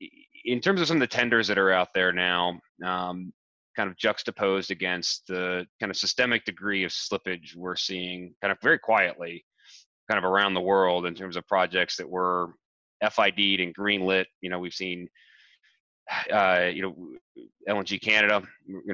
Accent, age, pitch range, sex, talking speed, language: American, 30-49, 90-100 Hz, male, 175 wpm, English